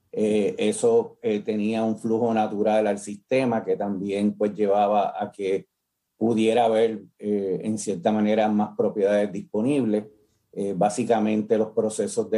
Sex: male